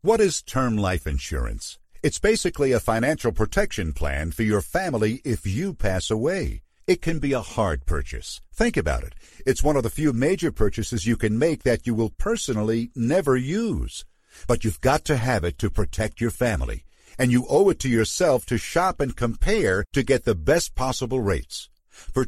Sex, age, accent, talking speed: male, 50-69, American, 190 wpm